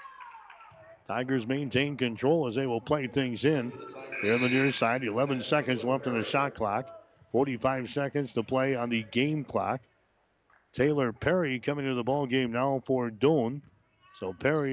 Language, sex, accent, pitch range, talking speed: English, male, American, 120-140 Hz, 165 wpm